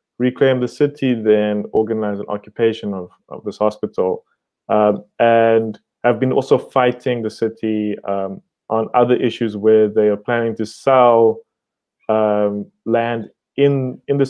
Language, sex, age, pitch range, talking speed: English, male, 20-39, 110-125 Hz, 145 wpm